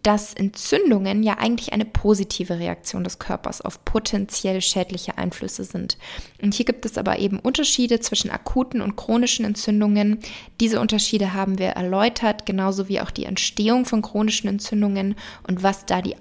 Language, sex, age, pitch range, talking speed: German, female, 20-39, 195-225 Hz, 160 wpm